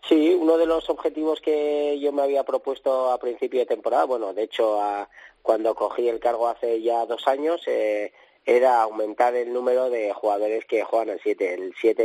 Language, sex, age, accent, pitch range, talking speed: Spanish, male, 30-49, Spanish, 105-135 Hz, 195 wpm